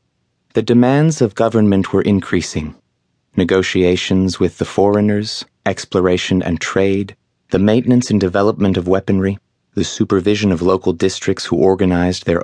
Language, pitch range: English, 90-110 Hz